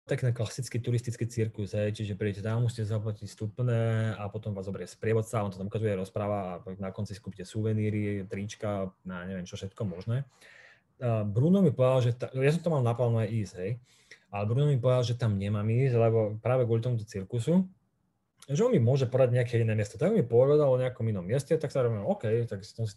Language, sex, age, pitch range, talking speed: Slovak, male, 30-49, 105-125 Hz, 210 wpm